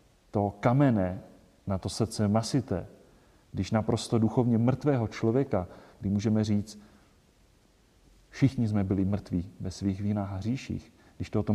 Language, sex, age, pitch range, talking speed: Czech, male, 40-59, 100-135 Hz, 130 wpm